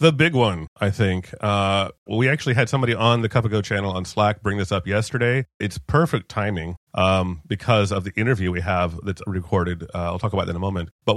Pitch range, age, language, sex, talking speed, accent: 100-125 Hz, 30-49, English, male, 225 wpm, American